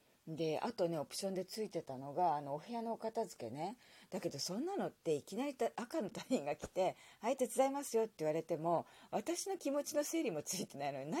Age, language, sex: 40-59, Japanese, female